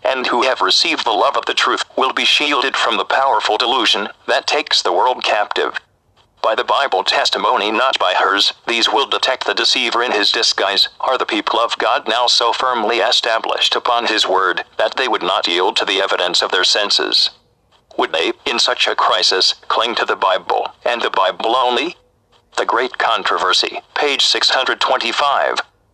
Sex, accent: male, American